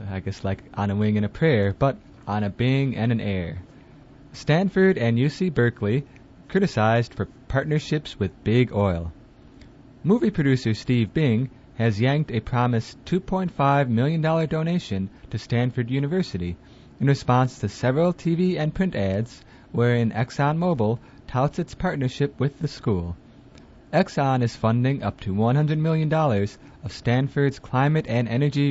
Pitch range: 110-145 Hz